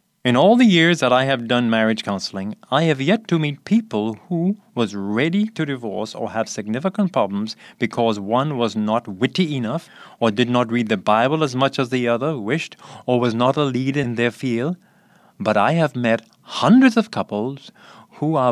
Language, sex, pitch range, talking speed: English, male, 115-180 Hz, 195 wpm